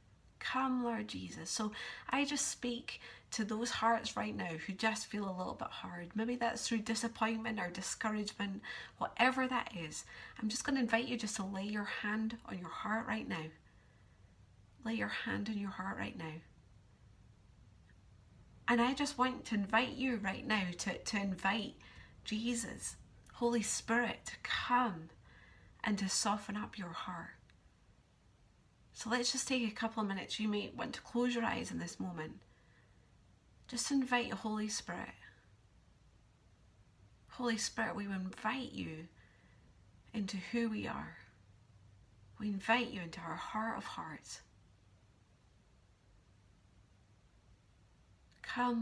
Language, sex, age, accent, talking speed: English, female, 30-49, British, 145 wpm